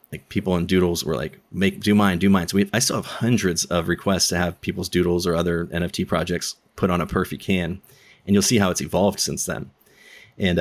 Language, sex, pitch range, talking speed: English, male, 90-100 Hz, 230 wpm